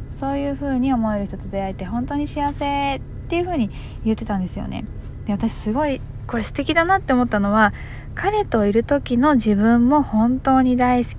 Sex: female